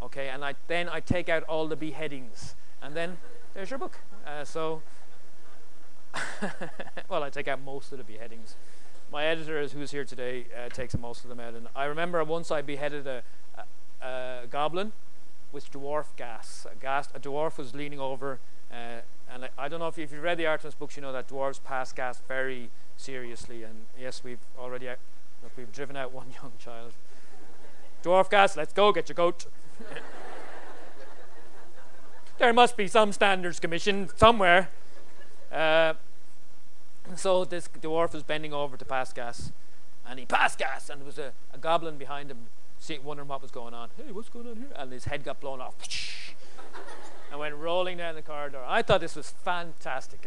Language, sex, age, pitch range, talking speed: English, male, 30-49, 130-165 Hz, 185 wpm